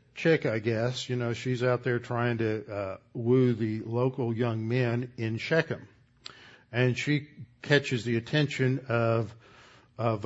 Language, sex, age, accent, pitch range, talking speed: English, male, 60-79, American, 120-140 Hz, 145 wpm